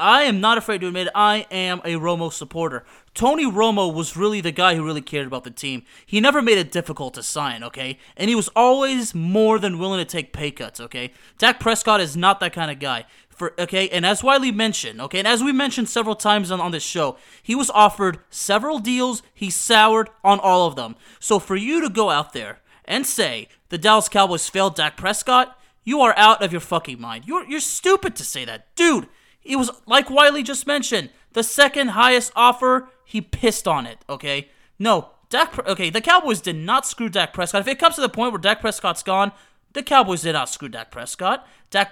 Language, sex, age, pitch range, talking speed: English, male, 30-49, 170-245 Hz, 220 wpm